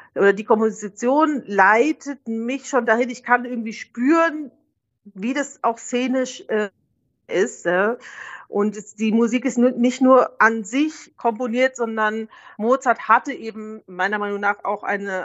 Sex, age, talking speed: female, 40-59, 145 wpm